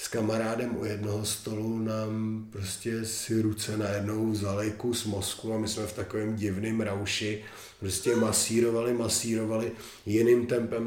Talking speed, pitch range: 145 wpm, 100-115 Hz